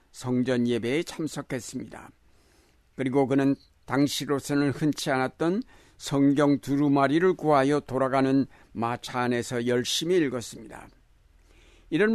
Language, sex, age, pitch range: Korean, male, 60-79, 110-150 Hz